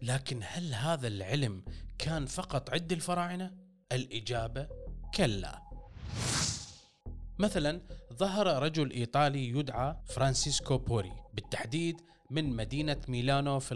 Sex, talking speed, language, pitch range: male, 95 wpm, Arabic, 125-165 Hz